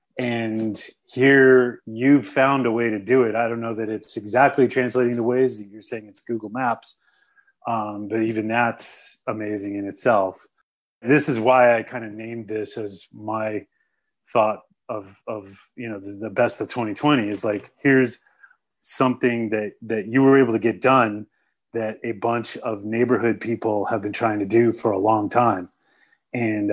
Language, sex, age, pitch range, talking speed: English, male, 30-49, 105-125 Hz, 180 wpm